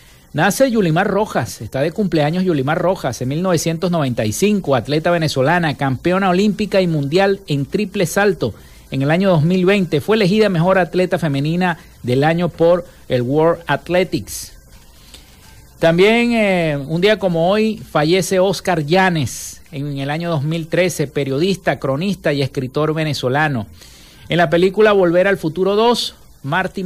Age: 50-69